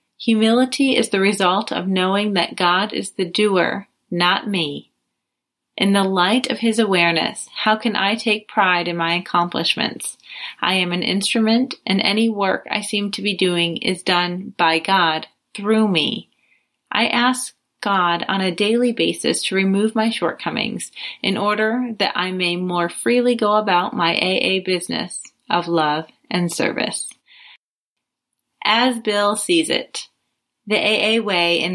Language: English